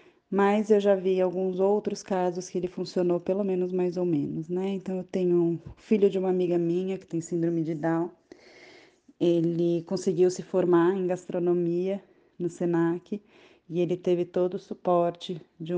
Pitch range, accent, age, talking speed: 170-185 Hz, Brazilian, 20-39, 170 wpm